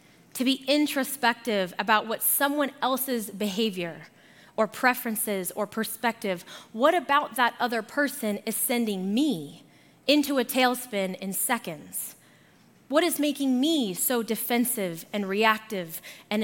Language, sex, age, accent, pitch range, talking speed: English, female, 20-39, American, 205-255 Hz, 125 wpm